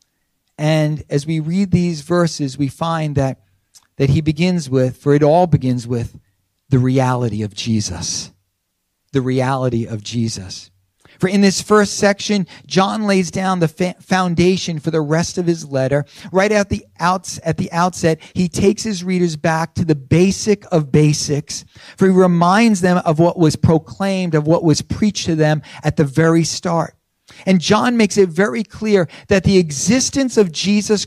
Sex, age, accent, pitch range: male, 50-69, American, 150-205 Hz